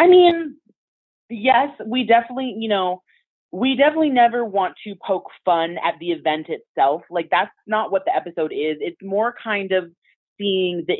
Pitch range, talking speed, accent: 150-195 Hz, 170 wpm, American